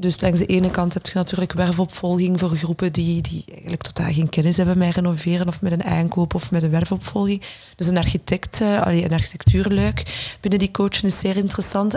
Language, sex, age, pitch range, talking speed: Dutch, female, 20-39, 165-190 Hz, 205 wpm